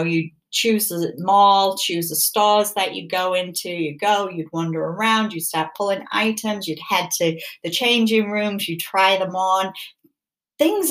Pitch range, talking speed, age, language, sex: 160-210 Hz, 170 wpm, 40-59, English, female